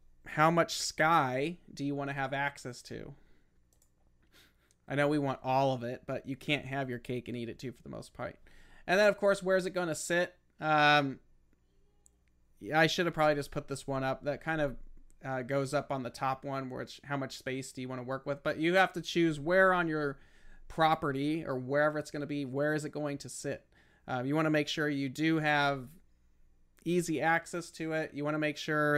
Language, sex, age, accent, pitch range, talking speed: English, male, 30-49, American, 130-155 Hz, 230 wpm